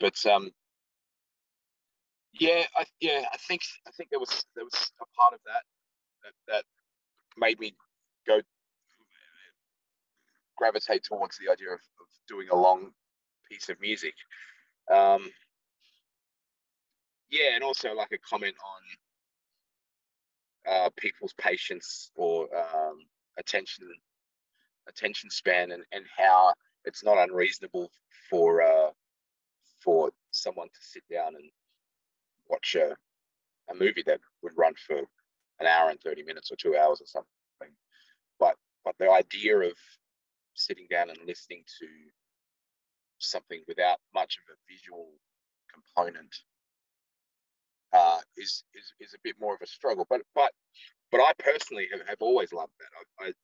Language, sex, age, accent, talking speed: English, male, 20-39, Australian, 135 wpm